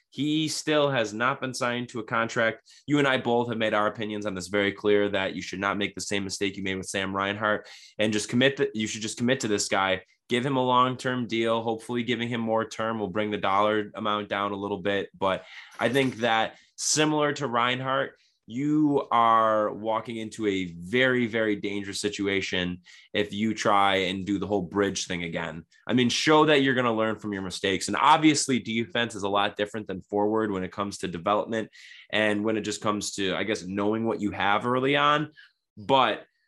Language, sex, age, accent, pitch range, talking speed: English, male, 20-39, American, 100-120 Hz, 215 wpm